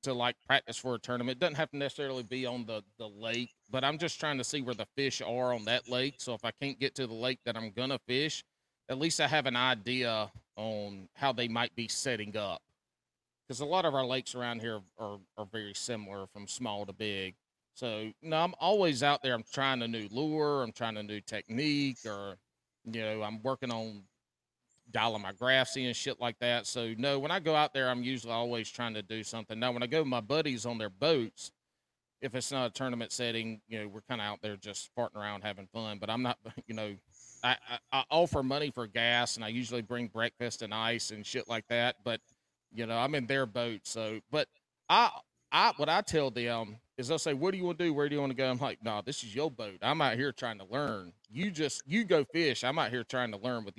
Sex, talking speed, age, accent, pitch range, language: male, 250 wpm, 40-59, American, 110-135 Hz, English